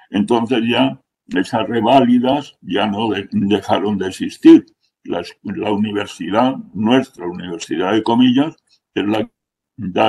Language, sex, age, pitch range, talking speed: Spanish, male, 60-79, 105-135 Hz, 120 wpm